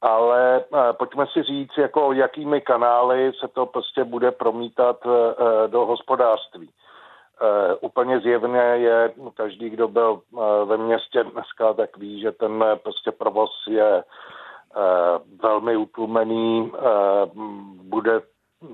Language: Czech